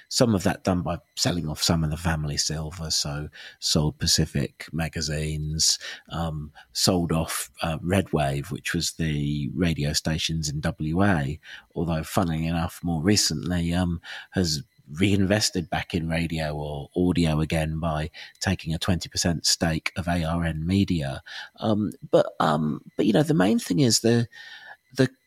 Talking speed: 150 wpm